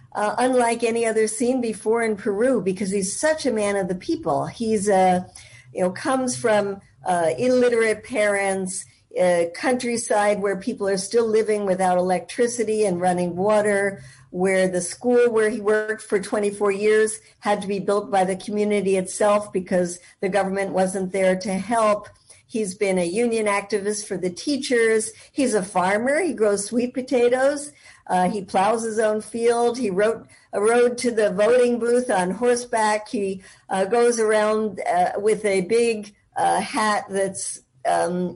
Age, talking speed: 50-69, 165 wpm